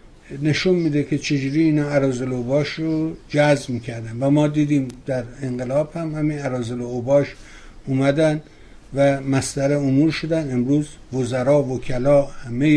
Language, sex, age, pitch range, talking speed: Persian, male, 60-79, 130-180 Hz, 135 wpm